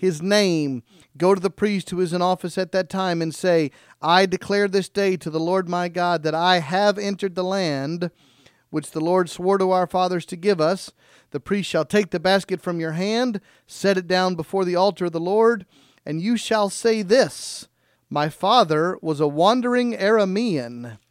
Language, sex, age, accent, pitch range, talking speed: English, male, 40-59, American, 165-205 Hz, 195 wpm